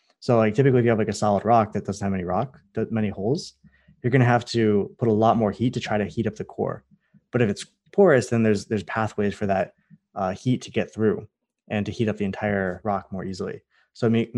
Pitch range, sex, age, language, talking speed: 105-125 Hz, male, 20-39, English, 260 wpm